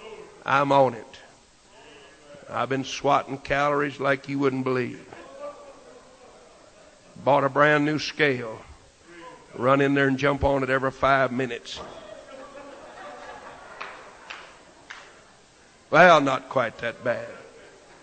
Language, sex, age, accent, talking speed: English, male, 60-79, American, 105 wpm